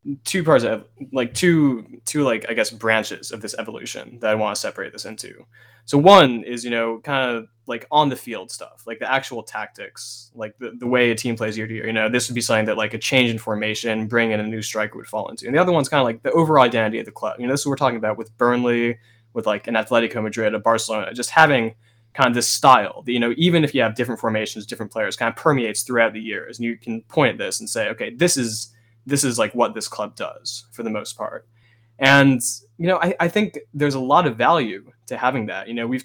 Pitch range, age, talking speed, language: 115-130 Hz, 20-39, 260 wpm, English